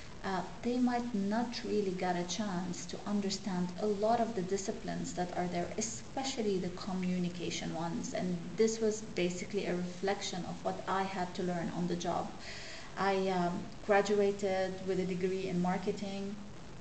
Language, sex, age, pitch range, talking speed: English, female, 30-49, 180-205 Hz, 160 wpm